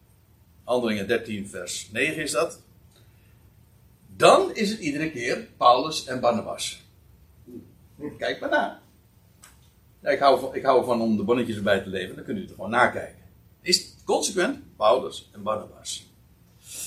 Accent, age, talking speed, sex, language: Dutch, 60-79, 135 wpm, male, Dutch